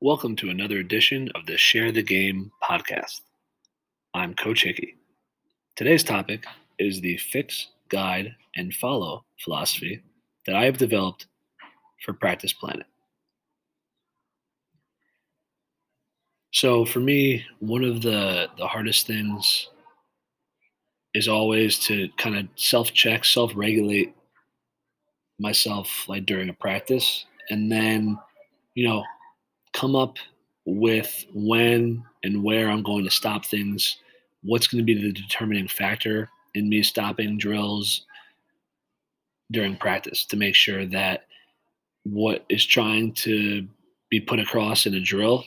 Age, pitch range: 30-49, 100-115 Hz